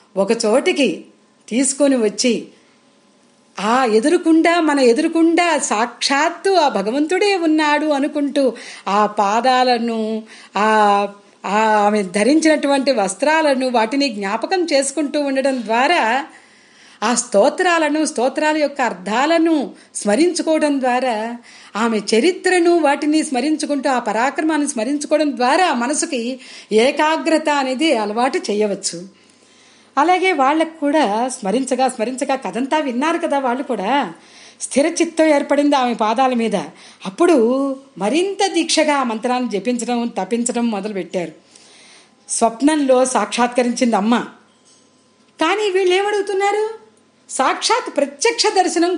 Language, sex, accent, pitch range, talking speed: Telugu, female, native, 230-310 Hz, 90 wpm